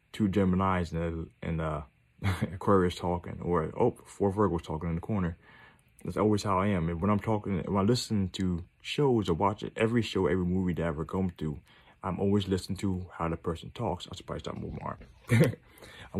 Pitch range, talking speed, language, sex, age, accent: 85-100 Hz, 200 wpm, English, male, 20-39, American